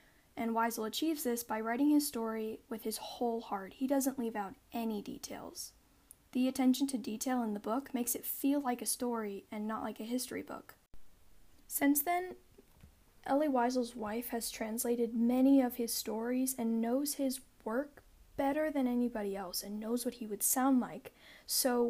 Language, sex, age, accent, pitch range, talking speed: English, female, 10-29, American, 225-265 Hz, 175 wpm